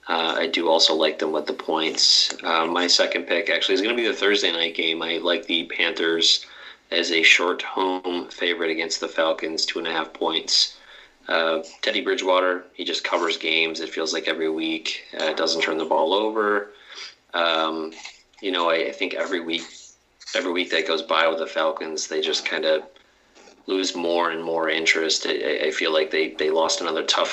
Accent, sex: American, male